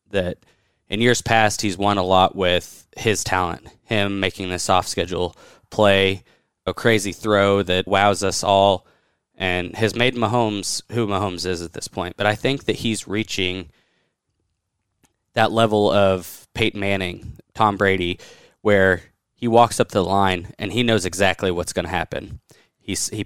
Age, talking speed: 20-39, 155 wpm